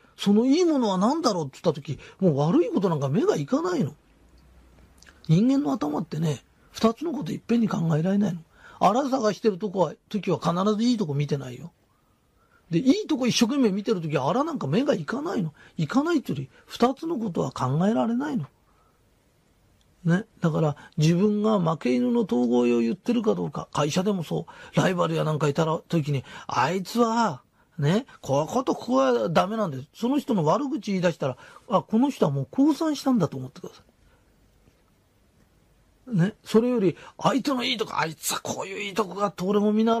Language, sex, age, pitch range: Japanese, male, 40-59, 160-230 Hz